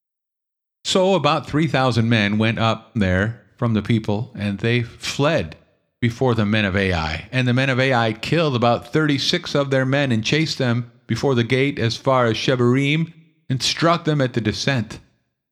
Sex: male